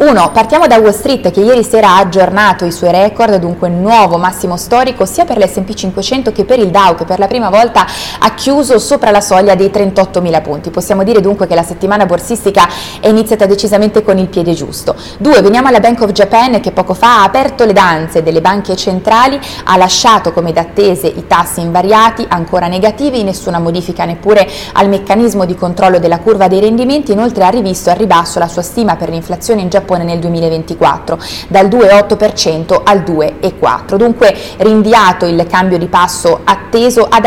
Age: 20-39